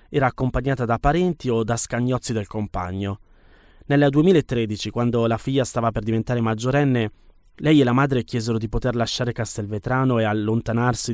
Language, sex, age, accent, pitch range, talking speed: Italian, male, 20-39, native, 105-130 Hz, 155 wpm